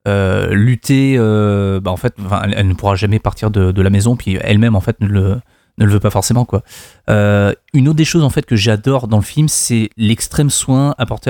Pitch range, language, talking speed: 100-125 Hz, French, 230 wpm